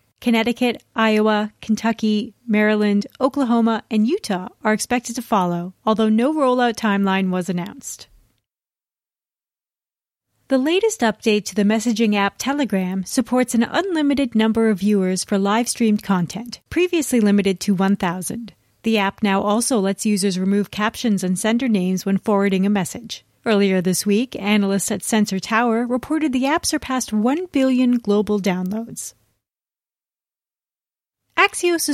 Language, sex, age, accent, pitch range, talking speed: English, female, 30-49, American, 200-250 Hz, 130 wpm